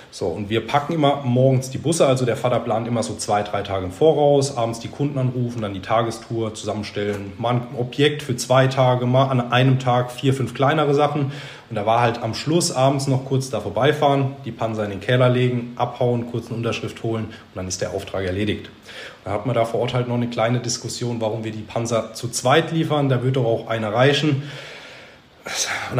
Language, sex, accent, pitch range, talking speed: German, male, German, 110-130 Hz, 220 wpm